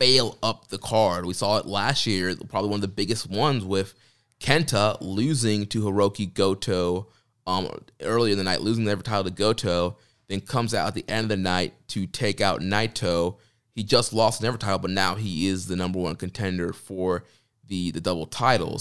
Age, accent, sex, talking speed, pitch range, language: 20-39, American, male, 205 wpm, 95-110 Hz, English